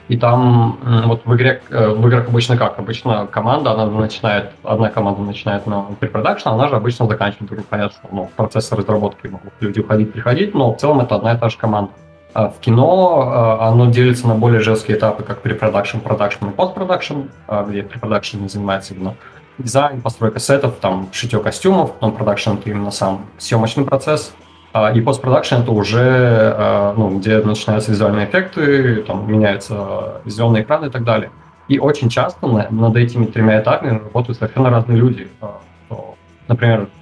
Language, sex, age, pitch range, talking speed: Russian, male, 20-39, 105-125 Hz, 160 wpm